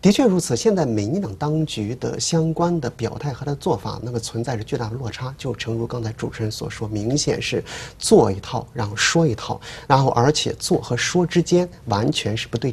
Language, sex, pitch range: Chinese, male, 115-160 Hz